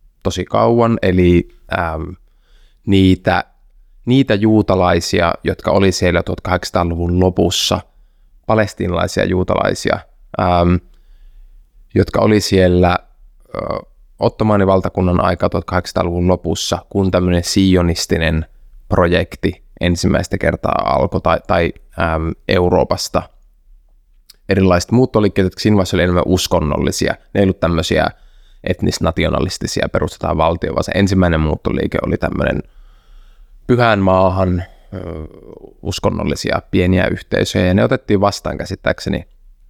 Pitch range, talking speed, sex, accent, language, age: 80-95 Hz, 95 wpm, male, native, Finnish, 20-39